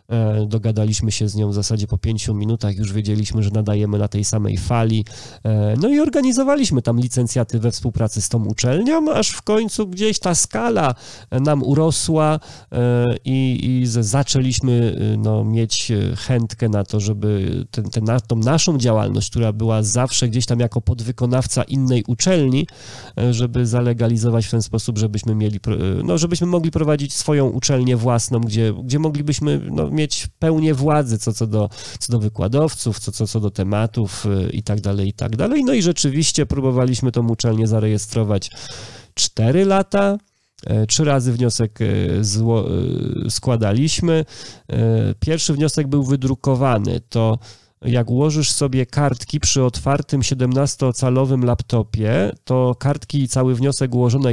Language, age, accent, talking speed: Polish, 40-59, native, 140 wpm